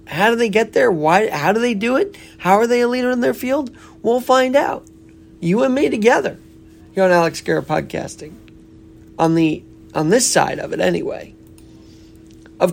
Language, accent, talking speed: English, American, 190 wpm